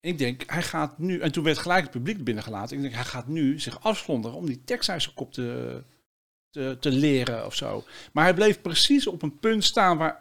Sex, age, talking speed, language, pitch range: male, 50-69, 225 wpm, Dutch, 135-180 Hz